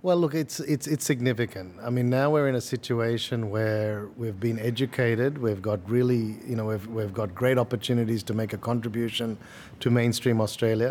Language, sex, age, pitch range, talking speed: Malayalam, male, 50-69, 110-130 Hz, 185 wpm